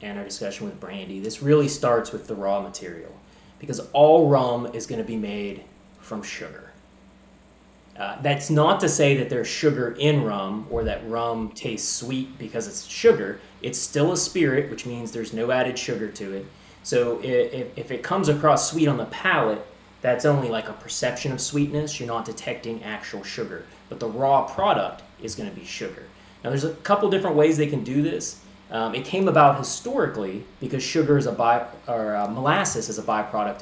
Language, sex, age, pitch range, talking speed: English, male, 30-49, 110-145 Hz, 190 wpm